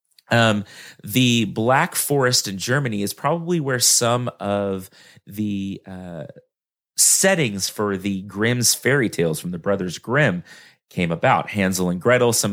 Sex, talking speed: male, 140 wpm